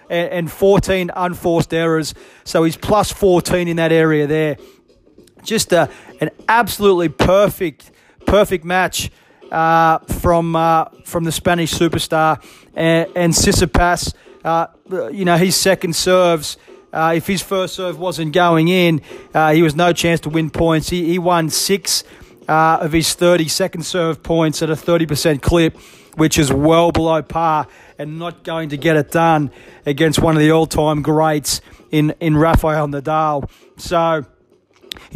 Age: 30-49